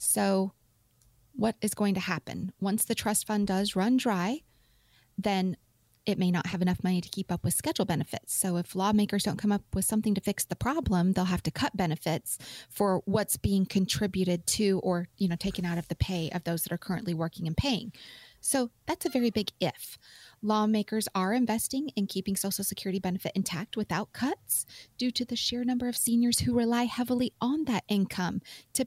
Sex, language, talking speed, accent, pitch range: female, English, 195 wpm, American, 180-225 Hz